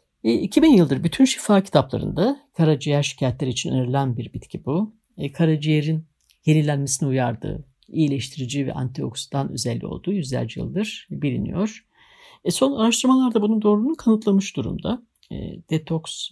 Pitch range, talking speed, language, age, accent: 140-210 Hz, 110 wpm, Turkish, 60-79, native